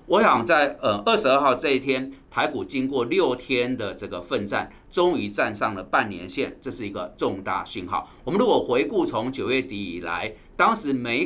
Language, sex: Chinese, male